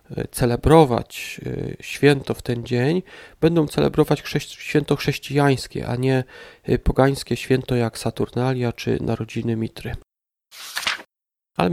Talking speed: 95 wpm